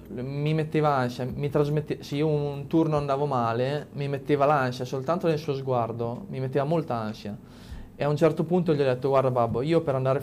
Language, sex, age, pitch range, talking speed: Italian, male, 20-39, 115-150 Hz, 200 wpm